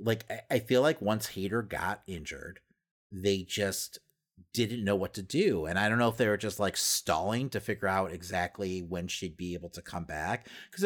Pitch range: 90-115 Hz